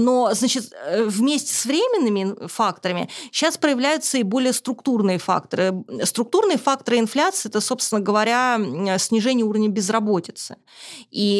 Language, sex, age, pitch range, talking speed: Russian, female, 20-39, 190-240 Hz, 115 wpm